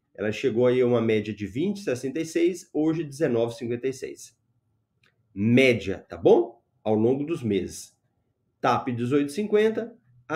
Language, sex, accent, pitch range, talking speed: Portuguese, male, Brazilian, 115-170 Hz, 110 wpm